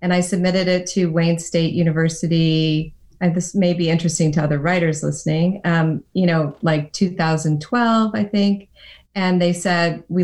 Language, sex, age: English, female, 30-49